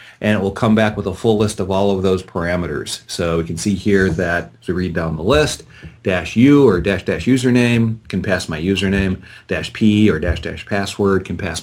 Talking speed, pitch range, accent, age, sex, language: 220 wpm, 95-120 Hz, American, 40-59, male, English